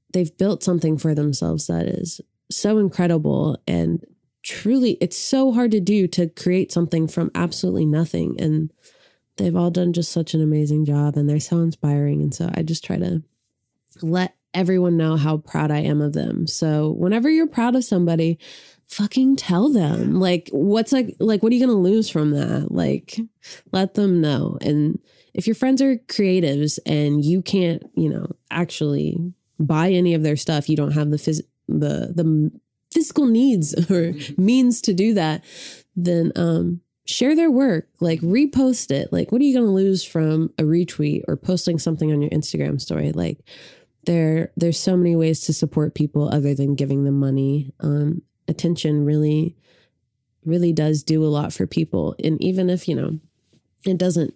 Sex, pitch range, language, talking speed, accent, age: female, 150-190 Hz, English, 180 wpm, American, 20-39